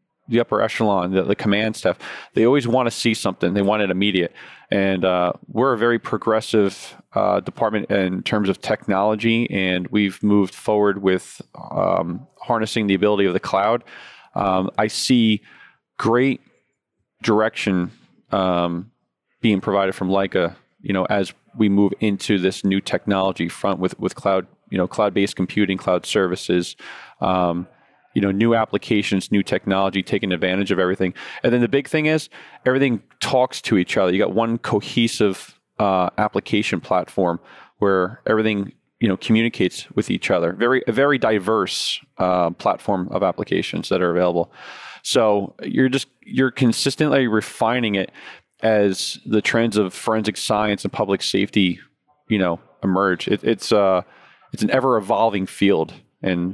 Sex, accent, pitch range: male, American, 95-115 Hz